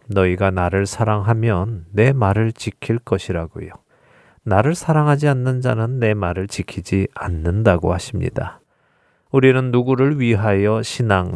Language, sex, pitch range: Korean, male, 95-125 Hz